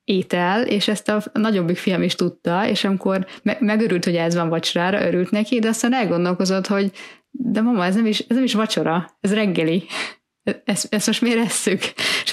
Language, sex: Hungarian, female